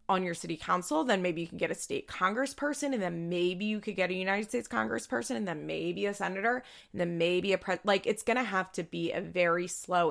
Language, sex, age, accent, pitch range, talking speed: English, female, 20-39, American, 175-205 Hz, 250 wpm